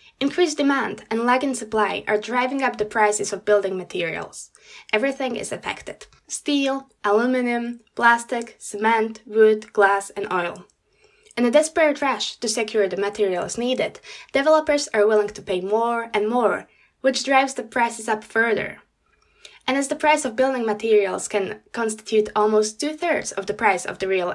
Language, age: Slovak, 10-29